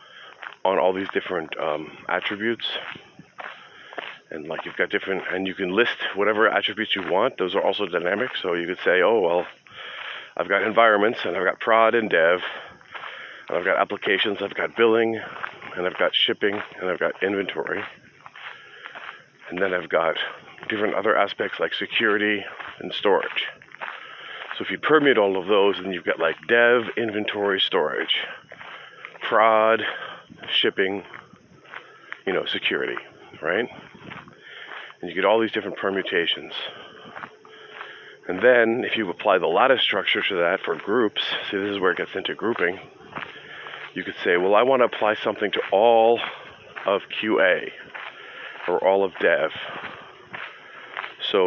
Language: English